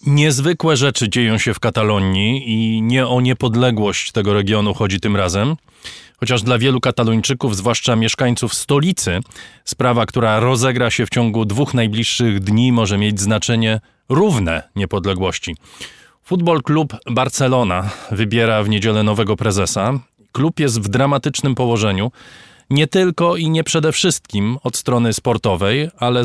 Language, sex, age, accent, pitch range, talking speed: Polish, male, 20-39, native, 110-130 Hz, 135 wpm